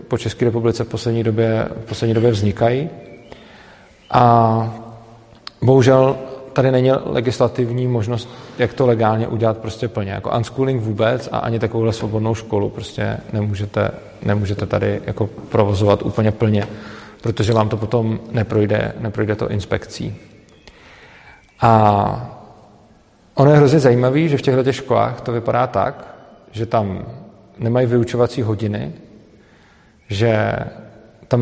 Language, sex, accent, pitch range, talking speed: Czech, male, native, 105-120 Hz, 120 wpm